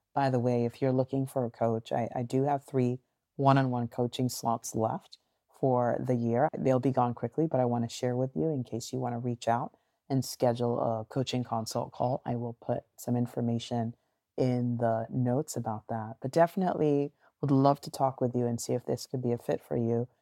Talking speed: 215 wpm